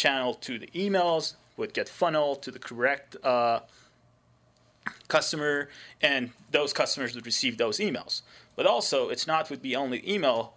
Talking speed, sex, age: 155 wpm, male, 30-49